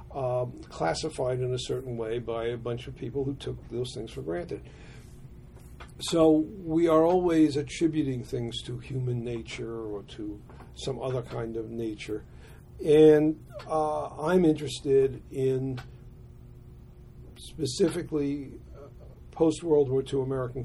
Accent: American